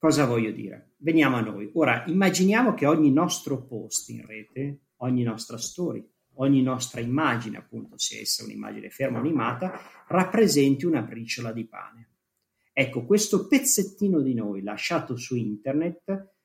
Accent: native